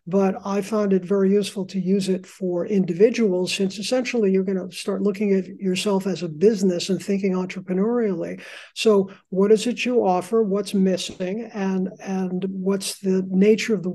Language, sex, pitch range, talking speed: English, male, 190-220 Hz, 170 wpm